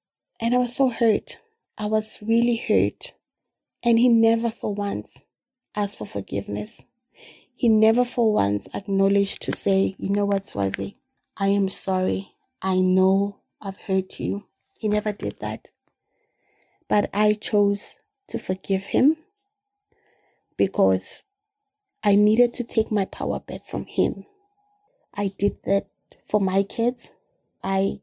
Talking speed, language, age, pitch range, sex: 135 wpm, English, 30-49, 195-225 Hz, female